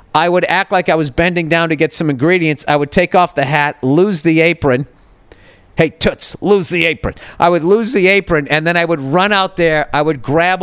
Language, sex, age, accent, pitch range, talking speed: English, male, 40-59, American, 140-190 Hz, 230 wpm